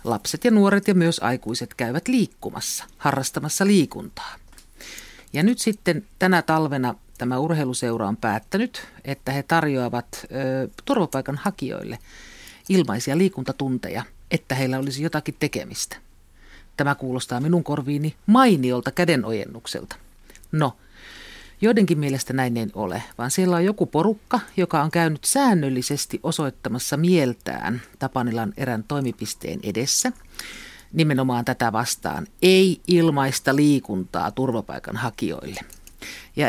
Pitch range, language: 130-180 Hz, Finnish